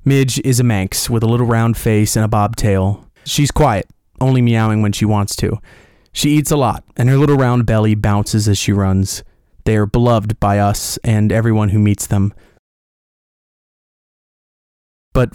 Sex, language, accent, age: male, English, American, 30-49